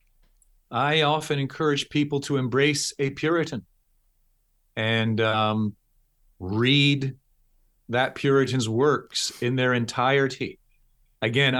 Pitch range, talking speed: 120-140 Hz, 95 wpm